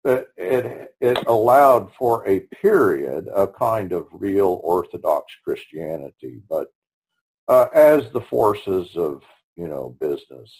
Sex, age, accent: male, 50-69, American